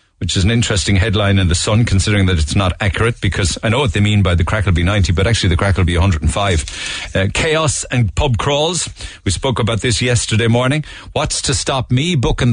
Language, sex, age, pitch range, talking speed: English, male, 50-69, 95-120 Hz, 230 wpm